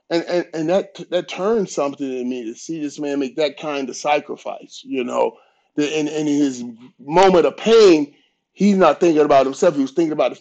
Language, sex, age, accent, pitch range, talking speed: English, male, 30-49, American, 125-160 Hz, 210 wpm